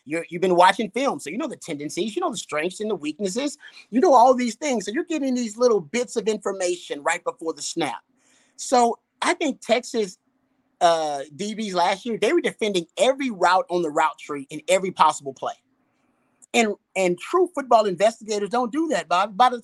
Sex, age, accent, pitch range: male, 30-49, American, 165-230 Hz